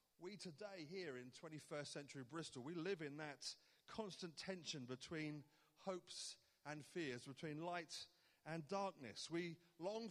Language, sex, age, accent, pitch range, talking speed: English, male, 30-49, British, 150-195 Hz, 135 wpm